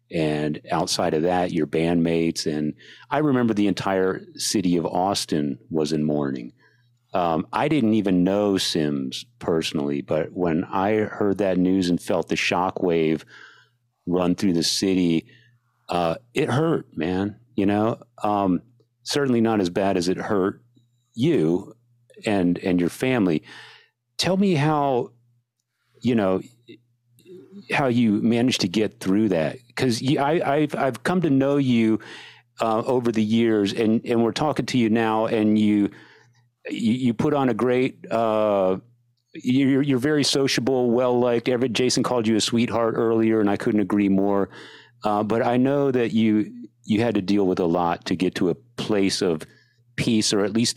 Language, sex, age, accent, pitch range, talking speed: English, male, 40-59, American, 95-120 Hz, 165 wpm